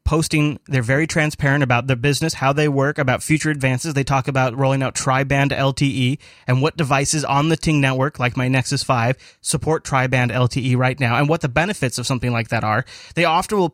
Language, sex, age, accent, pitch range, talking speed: English, male, 30-49, American, 130-155 Hz, 210 wpm